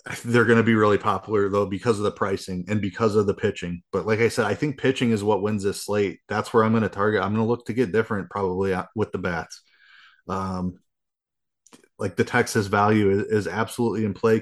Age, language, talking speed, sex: 30-49, English, 225 wpm, male